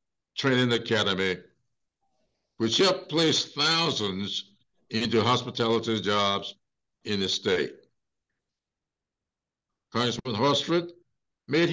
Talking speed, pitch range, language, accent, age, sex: 75 wpm, 110-145 Hz, English, American, 60-79, male